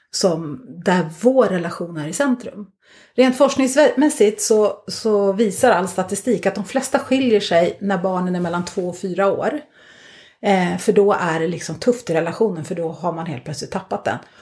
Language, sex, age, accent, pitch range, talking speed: Swedish, female, 30-49, native, 180-250 Hz, 185 wpm